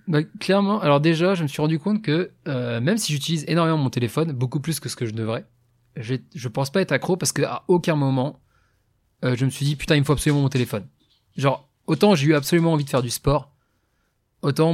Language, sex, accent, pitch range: French, male, French, 130-160 Hz